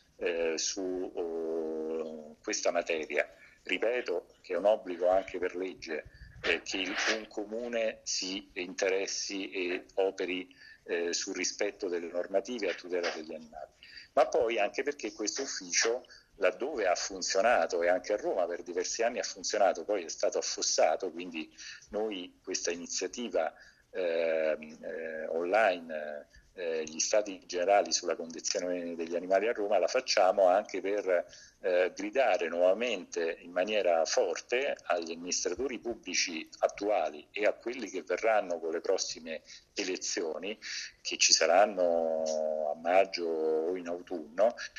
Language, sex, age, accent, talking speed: Italian, male, 40-59, native, 130 wpm